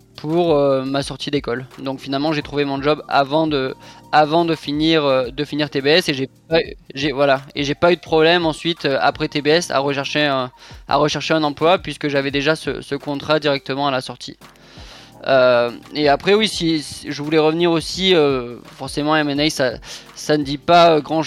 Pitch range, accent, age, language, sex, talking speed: 140-165 Hz, French, 20-39, French, male, 200 wpm